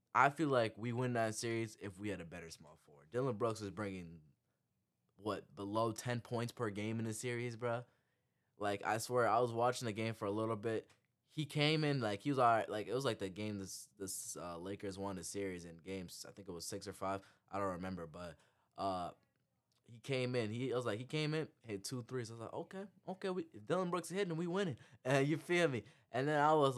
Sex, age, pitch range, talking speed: male, 10-29, 100-140 Hz, 245 wpm